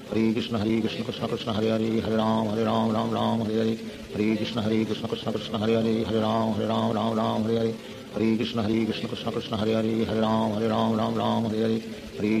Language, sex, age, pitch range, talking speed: Hindi, male, 50-69, 110-115 Hz, 195 wpm